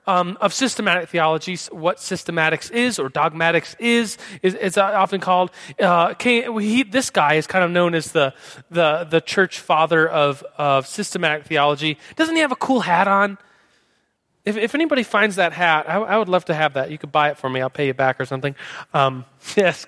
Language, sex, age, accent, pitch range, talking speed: English, male, 30-49, American, 160-225 Hz, 205 wpm